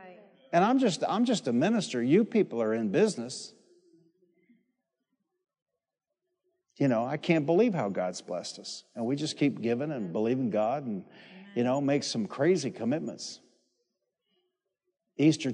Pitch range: 130-155 Hz